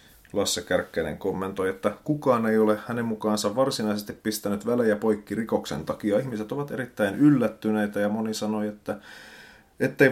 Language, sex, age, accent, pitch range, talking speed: Finnish, male, 30-49, native, 100-115 Hz, 140 wpm